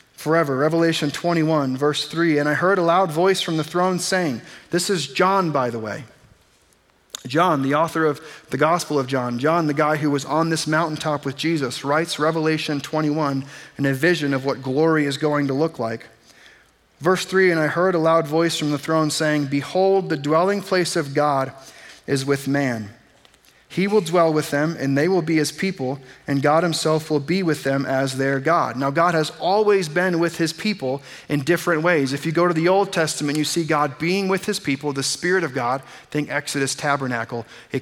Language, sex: English, male